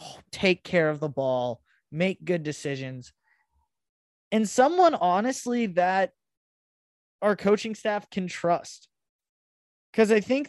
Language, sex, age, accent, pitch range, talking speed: English, male, 20-39, American, 140-180 Hz, 115 wpm